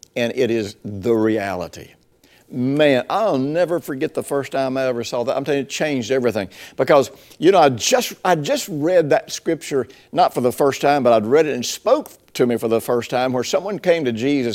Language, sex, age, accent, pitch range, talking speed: English, male, 60-79, American, 125-175 Hz, 225 wpm